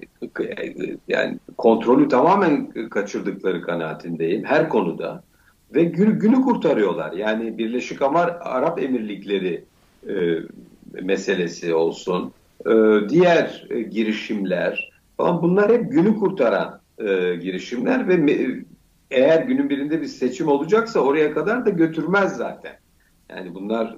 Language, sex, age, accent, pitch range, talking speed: Turkish, male, 50-69, native, 105-170 Hz, 110 wpm